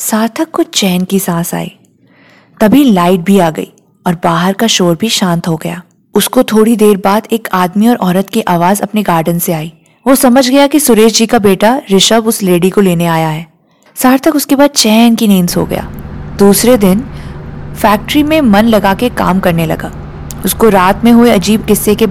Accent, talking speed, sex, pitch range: Indian, 165 wpm, female, 185-245 Hz